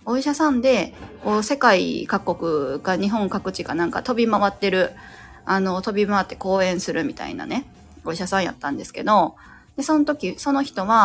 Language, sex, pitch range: Japanese, female, 185-260 Hz